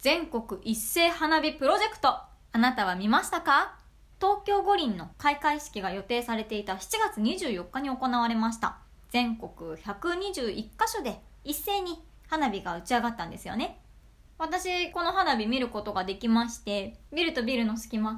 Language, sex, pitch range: Japanese, male, 220-295 Hz